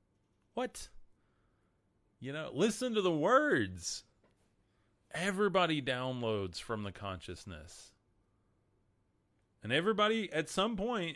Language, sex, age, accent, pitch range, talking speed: English, male, 30-49, American, 95-125 Hz, 90 wpm